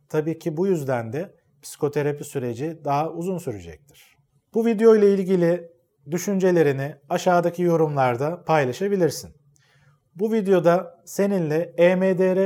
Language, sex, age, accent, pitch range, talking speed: Turkish, male, 40-59, native, 145-175 Hz, 100 wpm